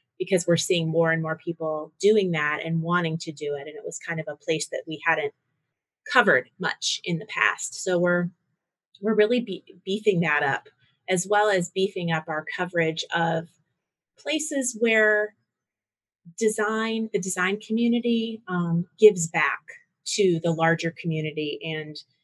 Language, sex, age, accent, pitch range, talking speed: English, female, 30-49, American, 160-200 Hz, 160 wpm